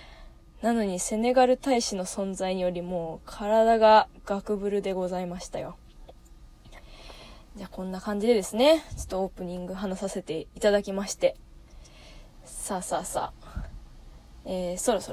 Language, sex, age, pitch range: Japanese, female, 20-39, 205-305 Hz